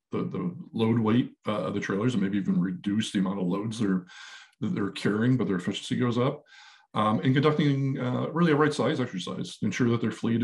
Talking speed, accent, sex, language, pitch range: 225 wpm, American, male, English, 105-130 Hz